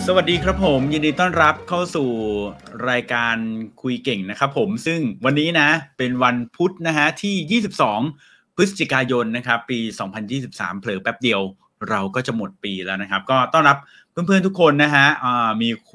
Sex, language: male, Thai